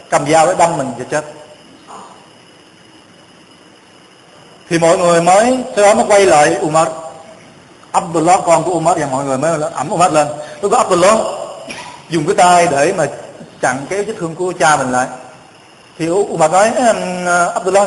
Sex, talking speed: male, 160 wpm